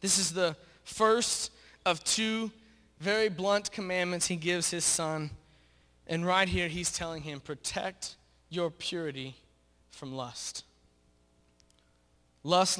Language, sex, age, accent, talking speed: English, male, 20-39, American, 115 wpm